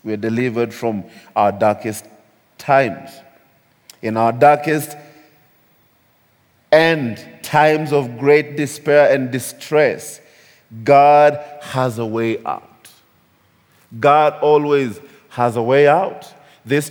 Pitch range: 130-165 Hz